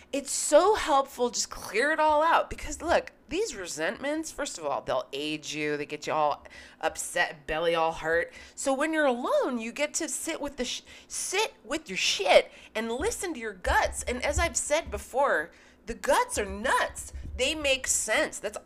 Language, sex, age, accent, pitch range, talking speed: English, female, 30-49, American, 235-315 Hz, 190 wpm